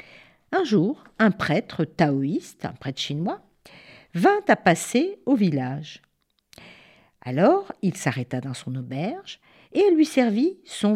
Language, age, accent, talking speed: French, 50-69, French, 130 wpm